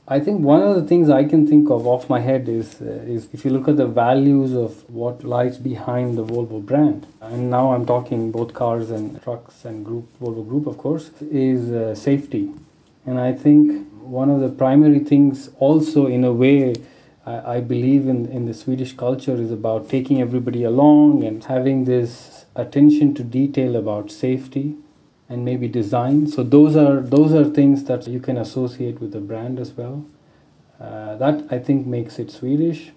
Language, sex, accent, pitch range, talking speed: English, male, Indian, 120-145 Hz, 190 wpm